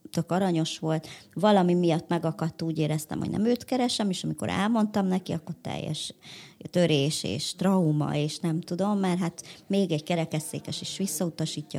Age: 30-49